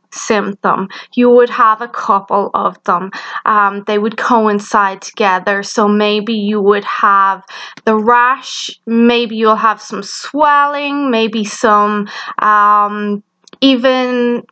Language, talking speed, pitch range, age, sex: English, 120 wpm, 215-275 Hz, 20-39, female